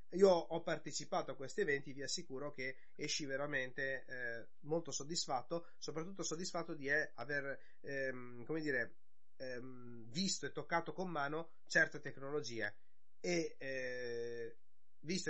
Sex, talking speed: male, 125 wpm